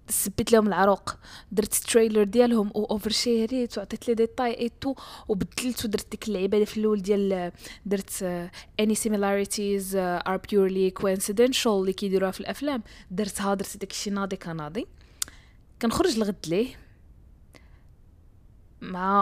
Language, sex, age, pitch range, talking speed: Arabic, female, 20-39, 180-235 Hz, 125 wpm